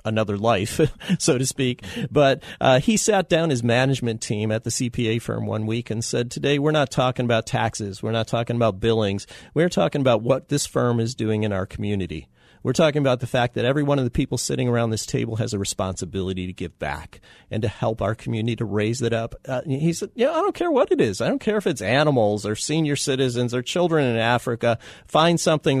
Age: 40-59